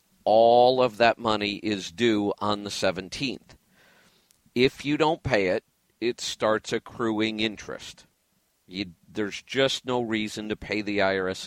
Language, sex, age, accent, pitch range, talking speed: English, male, 50-69, American, 100-120 Hz, 135 wpm